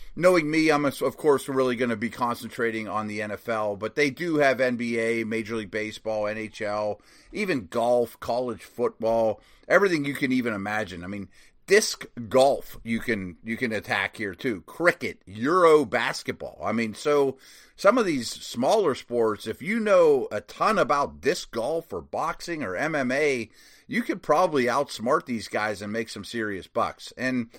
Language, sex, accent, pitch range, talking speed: English, male, American, 110-155 Hz, 165 wpm